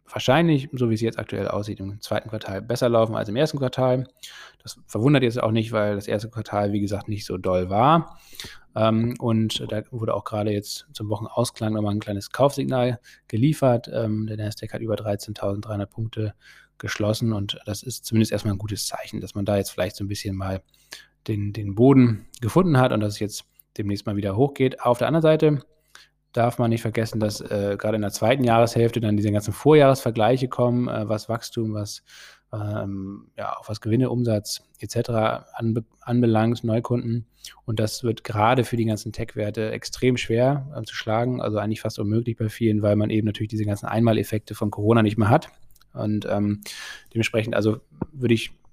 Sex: male